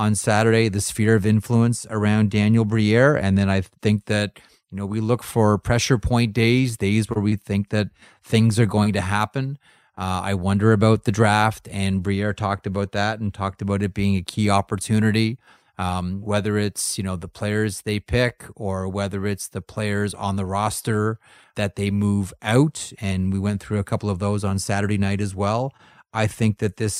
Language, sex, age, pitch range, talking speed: English, male, 30-49, 100-115 Hz, 200 wpm